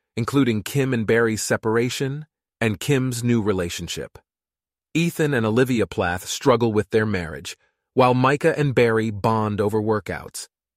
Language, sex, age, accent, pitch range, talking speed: English, male, 30-49, American, 105-130 Hz, 135 wpm